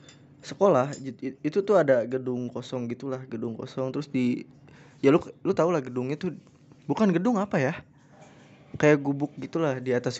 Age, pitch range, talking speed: 20-39, 130-160 Hz, 160 wpm